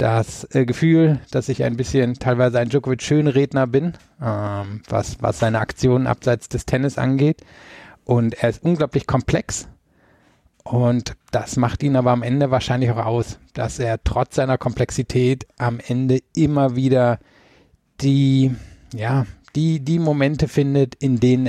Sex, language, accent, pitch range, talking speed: male, German, German, 110-130 Hz, 140 wpm